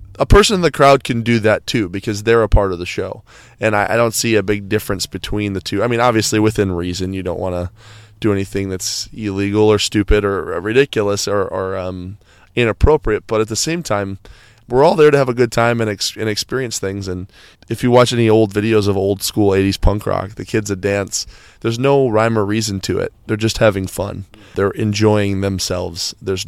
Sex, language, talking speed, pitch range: male, English, 220 wpm, 95-110 Hz